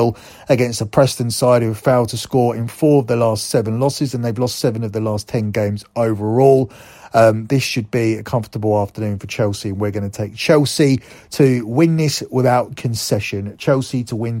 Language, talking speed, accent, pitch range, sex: English, 205 wpm, British, 110-135 Hz, male